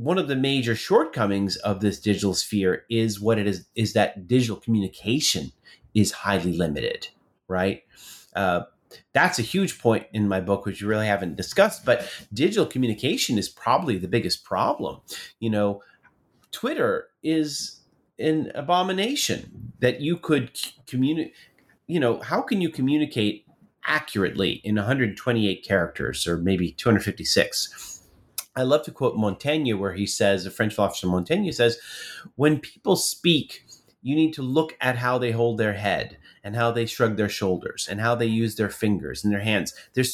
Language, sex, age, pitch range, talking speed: English, male, 30-49, 100-145 Hz, 155 wpm